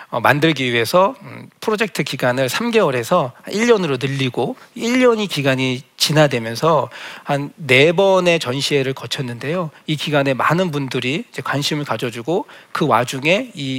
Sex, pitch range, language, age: male, 135-185 Hz, Korean, 40-59